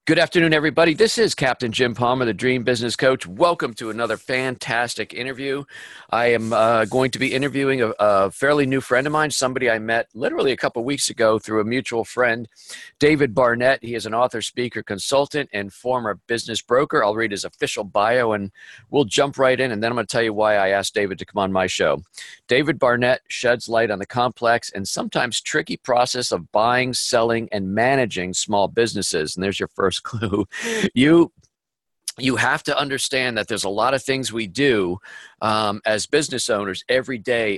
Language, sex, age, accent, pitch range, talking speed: English, male, 50-69, American, 105-130 Hz, 195 wpm